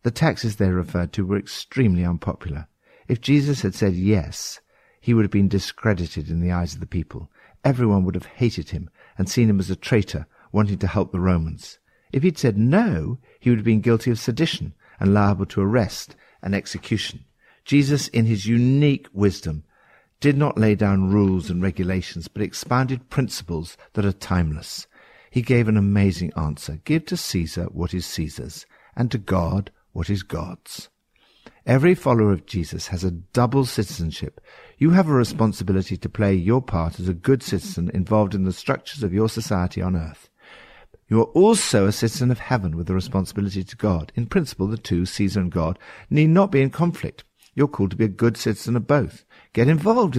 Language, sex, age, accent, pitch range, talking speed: English, male, 60-79, British, 90-120 Hz, 190 wpm